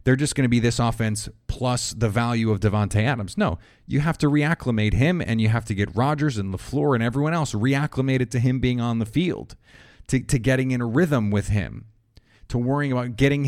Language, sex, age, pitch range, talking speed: English, male, 30-49, 110-135 Hz, 220 wpm